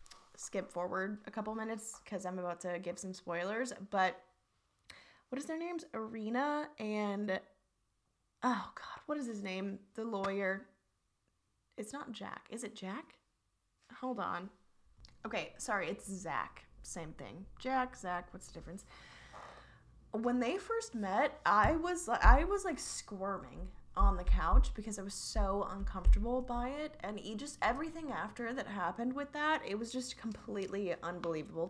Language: English